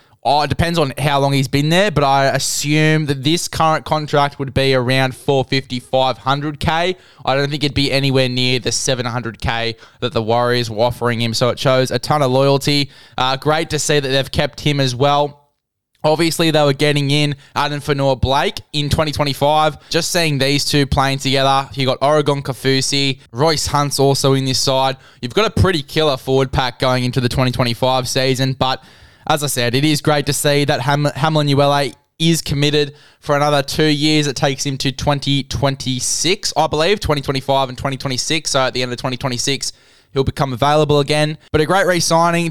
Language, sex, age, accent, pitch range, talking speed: English, male, 10-29, Australian, 130-145 Hz, 190 wpm